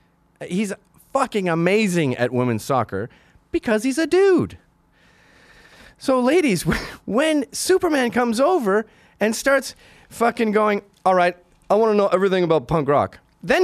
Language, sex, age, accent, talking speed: English, male, 30-49, American, 130 wpm